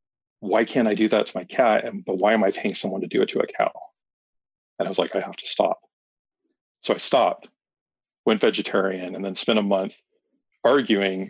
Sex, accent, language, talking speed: male, American, English, 210 wpm